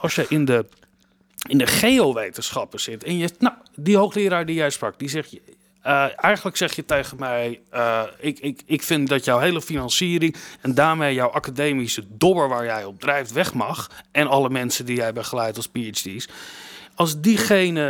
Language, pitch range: Dutch, 135-175 Hz